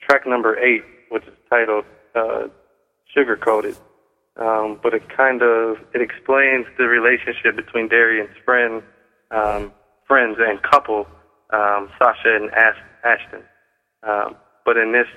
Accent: American